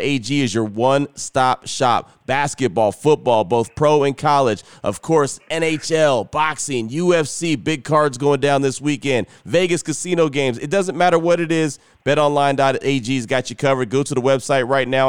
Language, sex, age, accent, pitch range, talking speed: English, male, 30-49, American, 130-155 Hz, 165 wpm